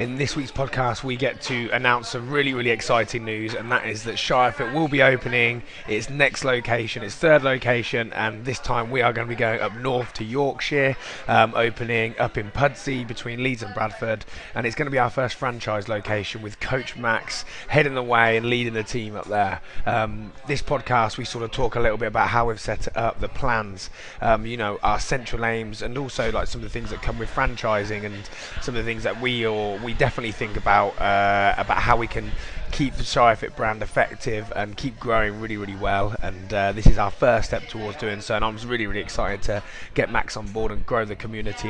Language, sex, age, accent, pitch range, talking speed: English, male, 20-39, British, 105-125 Hz, 225 wpm